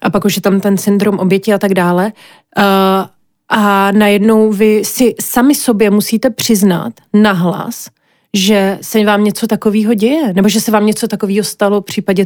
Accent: native